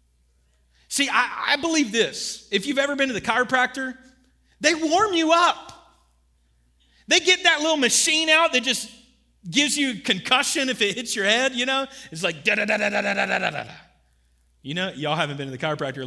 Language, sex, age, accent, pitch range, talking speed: English, male, 30-49, American, 185-255 Hz, 200 wpm